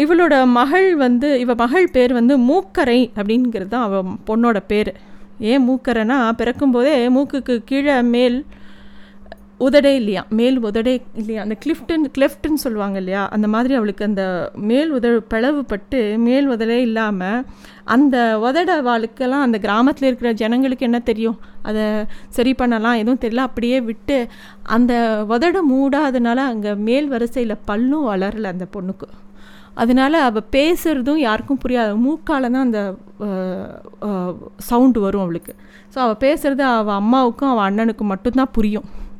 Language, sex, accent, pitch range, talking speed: Tamil, female, native, 215-270 Hz, 130 wpm